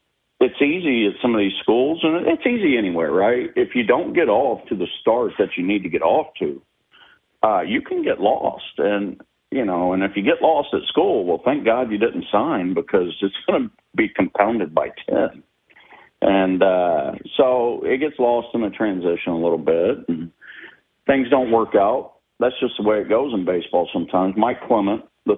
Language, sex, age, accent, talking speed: English, male, 50-69, American, 200 wpm